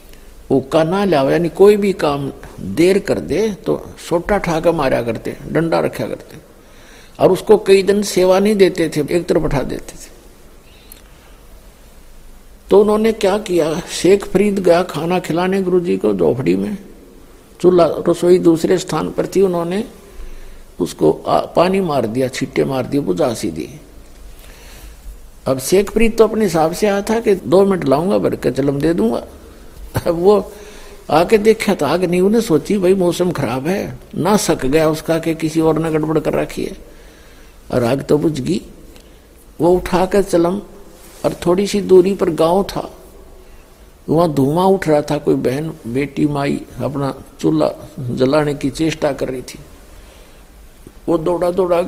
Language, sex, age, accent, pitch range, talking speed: Hindi, male, 60-79, native, 145-195 Hz, 160 wpm